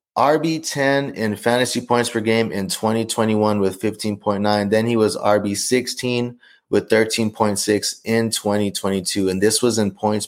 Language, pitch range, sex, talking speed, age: English, 100-115 Hz, male, 135 wpm, 20-39